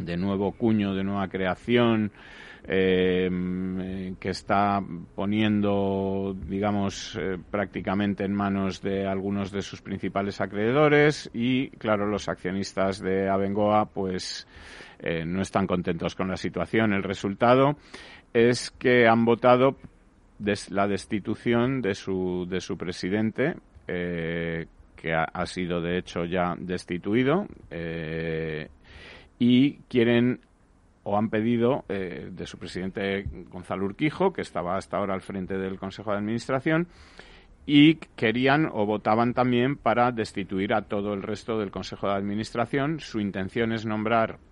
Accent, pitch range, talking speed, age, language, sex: Spanish, 90-110 Hz, 135 wpm, 40-59, Spanish, male